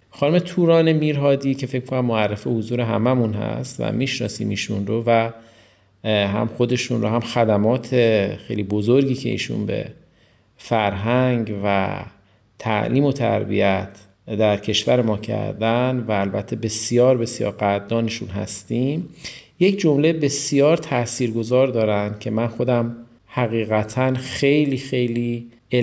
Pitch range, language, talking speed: 110-135 Hz, Persian, 125 wpm